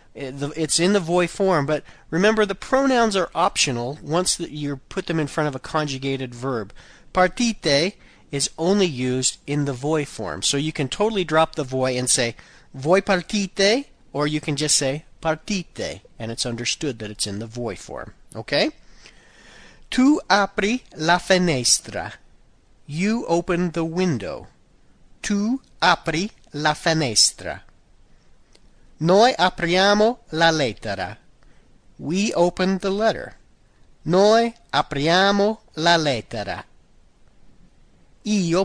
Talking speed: 125 wpm